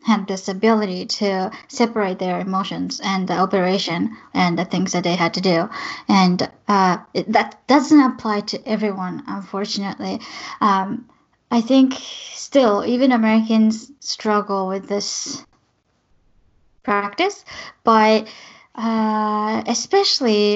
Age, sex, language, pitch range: 10-29, female, Japanese, 195-240 Hz